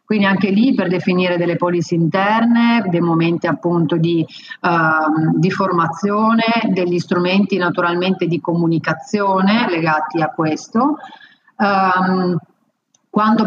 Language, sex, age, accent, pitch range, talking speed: Italian, female, 30-49, native, 175-215 Hz, 100 wpm